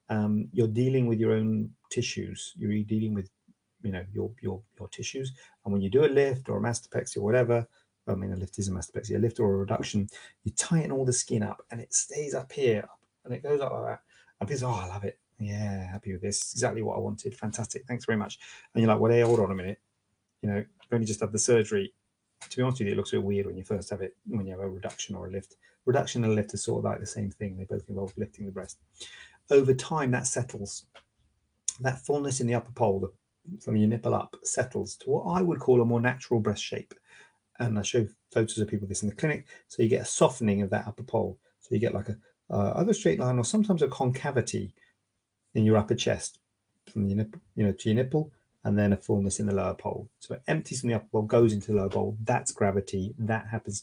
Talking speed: 245 wpm